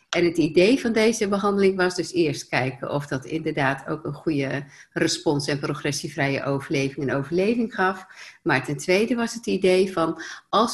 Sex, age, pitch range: female, 50-69, 155-200 Hz